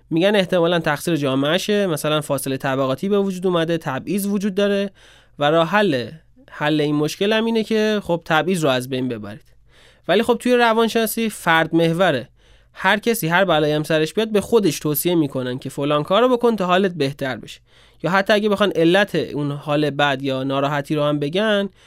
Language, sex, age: Persian, male, 20-39